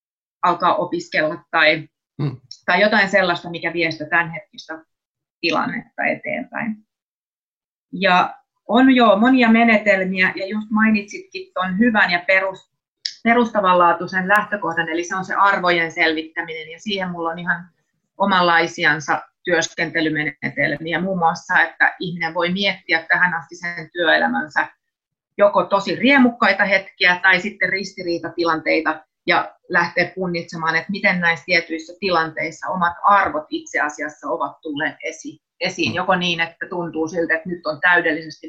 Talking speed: 125 wpm